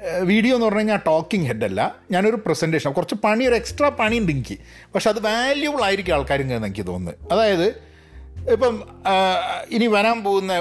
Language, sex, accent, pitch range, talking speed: Malayalam, male, native, 130-215 Hz, 155 wpm